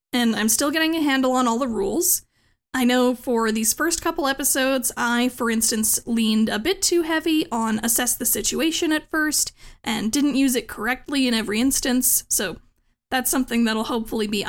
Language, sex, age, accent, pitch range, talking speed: English, female, 10-29, American, 240-310 Hz, 185 wpm